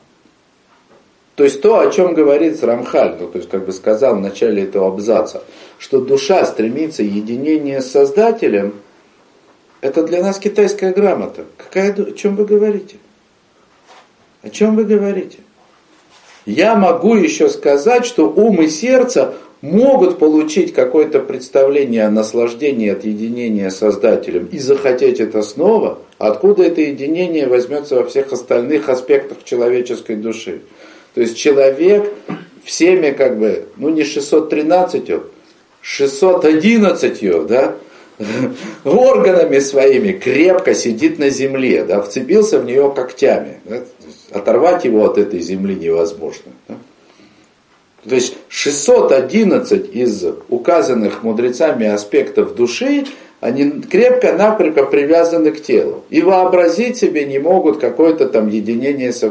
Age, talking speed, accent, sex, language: 50-69, 120 wpm, native, male, Russian